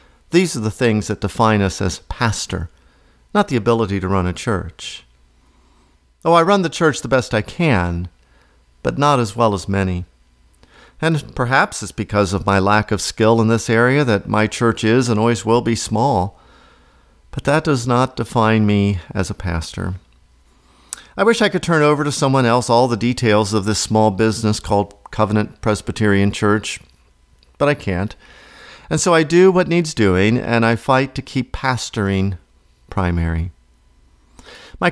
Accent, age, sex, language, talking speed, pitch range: American, 50-69, male, English, 170 wpm, 95-130 Hz